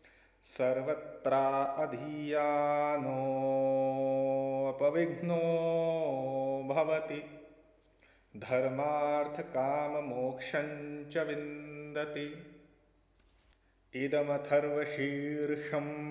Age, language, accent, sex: 30-49, Hindi, native, male